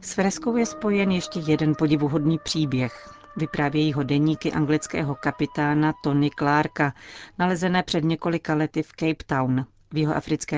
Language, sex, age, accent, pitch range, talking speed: Czech, female, 40-59, native, 145-160 Hz, 135 wpm